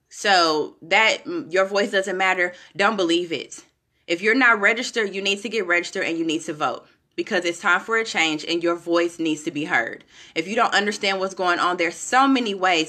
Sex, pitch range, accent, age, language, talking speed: female, 175-230 Hz, American, 20-39, English, 220 wpm